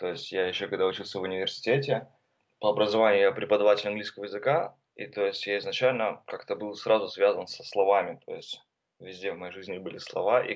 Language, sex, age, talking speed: Russian, male, 20-39, 195 wpm